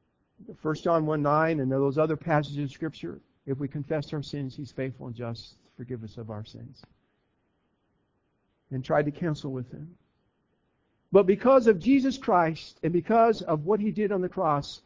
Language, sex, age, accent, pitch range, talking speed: English, male, 50-69, American, 155-210 Hz, 180 wpm